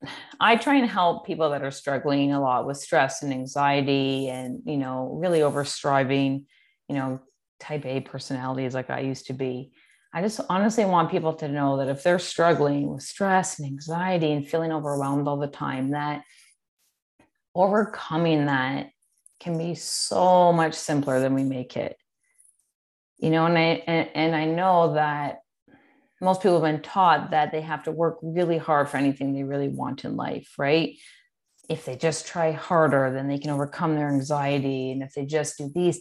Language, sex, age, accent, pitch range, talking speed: English, female, 30-49, American, 140-175 Hz, 180 wpm